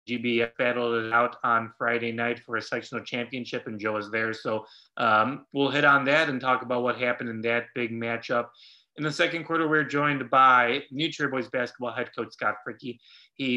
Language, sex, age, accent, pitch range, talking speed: English, male, 30-49, American, 115-140 Hz, 205 wpm